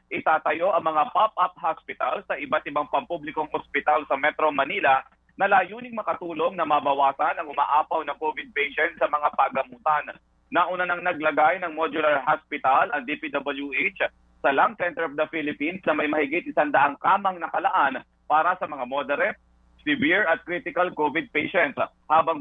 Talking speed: 150 wpm